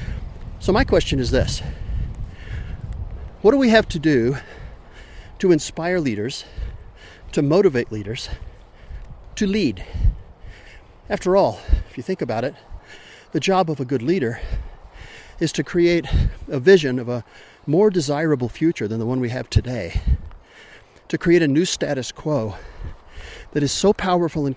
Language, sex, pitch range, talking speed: English, male, 110-165 Hz, 145 wpm